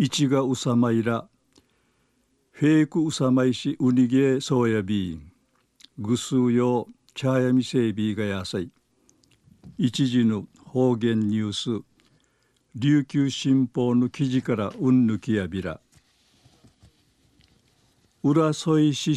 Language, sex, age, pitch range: Japanese, male, 60-79, 120-145 Hz